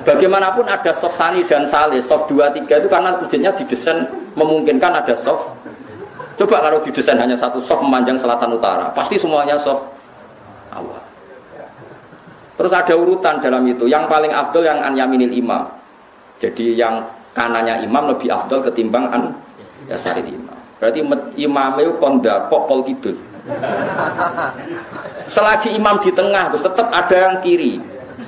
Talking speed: 140 wpm